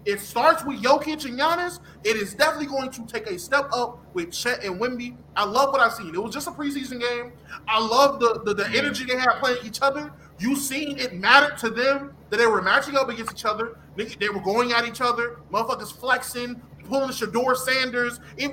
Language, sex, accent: English, male, American